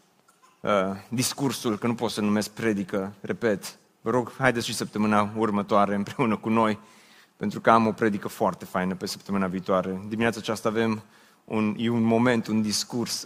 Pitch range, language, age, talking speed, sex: 110-135 Hz, Romanian, 30-49, 170 wpm, male